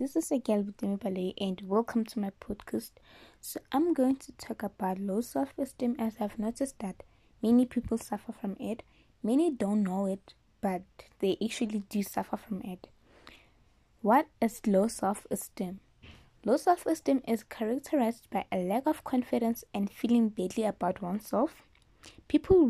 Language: English